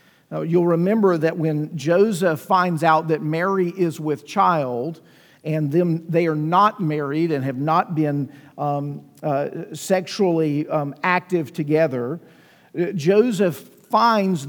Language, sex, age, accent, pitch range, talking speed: English, male, 50-69, American, 160-200 Hz, 125 wpm